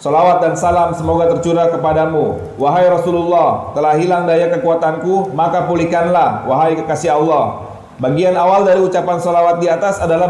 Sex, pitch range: male, 165-185 Hz